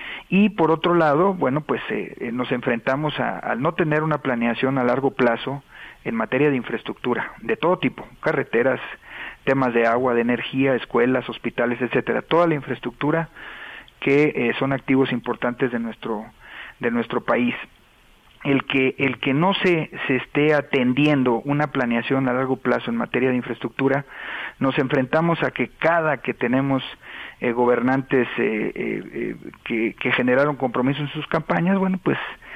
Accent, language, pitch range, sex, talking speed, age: Mexican, Spanish, 120-145 Hz, male, 160 wpm, 40-59